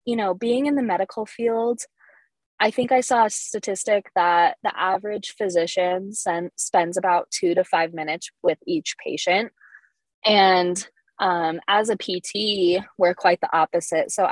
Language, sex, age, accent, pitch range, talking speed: English, female, 20-39, American, 170-200 Hz, 150 wpm